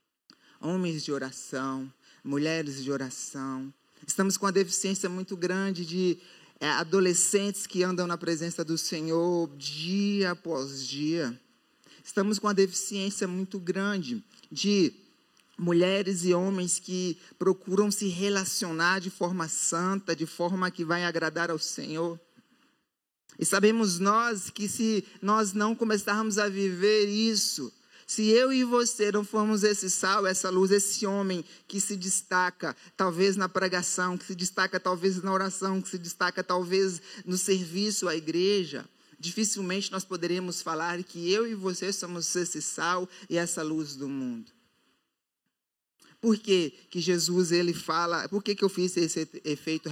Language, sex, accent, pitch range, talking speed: Portuguese, male, Brazilian, 170-195 Hz, 140 wpm